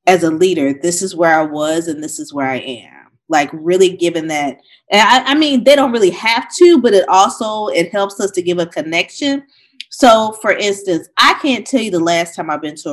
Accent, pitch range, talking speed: American, 160-210 Hz, 230 wpm